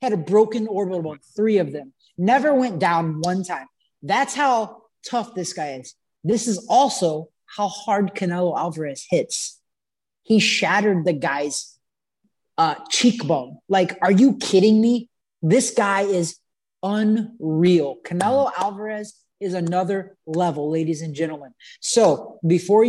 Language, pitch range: English, 165-210 Hz